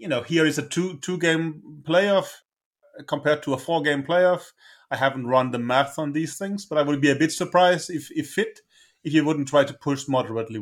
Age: 30-49